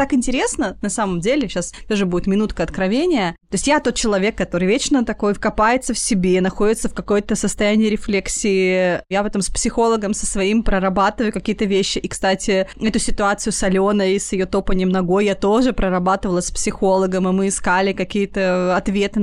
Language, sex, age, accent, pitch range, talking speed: Russian, female, 20-39, native, 190-240 Hz, 180 wpm